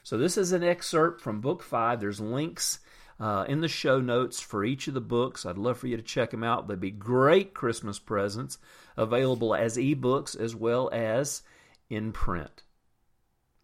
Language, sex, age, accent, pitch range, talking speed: English, male, 40-59, American, 110-145 Hz, 180 wpm